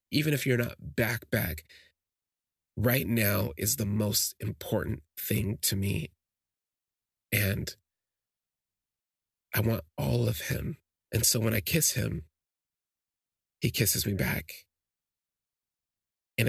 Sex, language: male, English